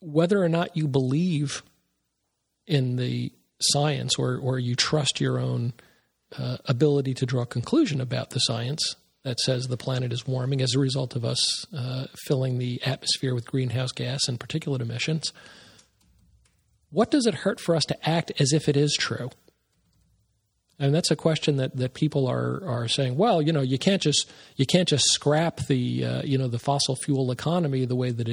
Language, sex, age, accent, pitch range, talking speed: English, male, 40-59, American, 125-150 Hz, 190 wpm